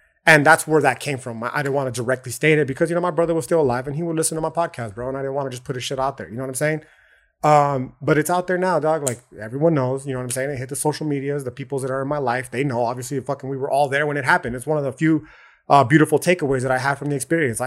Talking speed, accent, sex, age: 330 wpm, American, male, 30-49